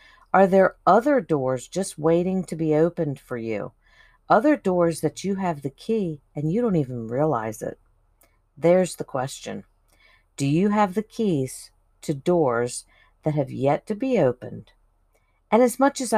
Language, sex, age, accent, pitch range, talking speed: English, female, 50-69, American, 140-185 Hz, 165 wpm